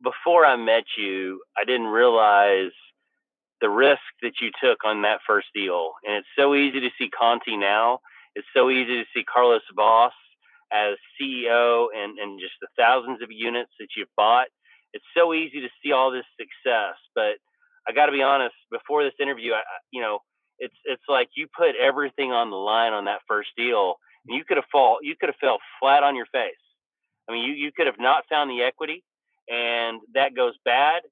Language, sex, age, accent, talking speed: English, male, 30-49, American, 190 wpm